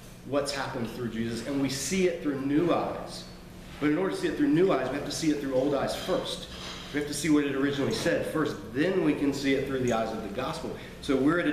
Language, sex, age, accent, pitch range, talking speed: English, male, 40-59, American, 120-150 Hz, 275 wpm